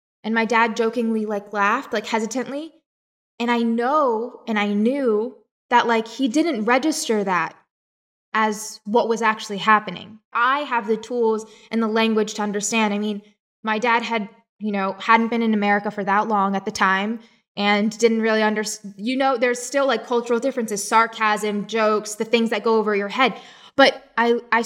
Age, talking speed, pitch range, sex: 10-29, 180 wpm, 205-230 Hz, female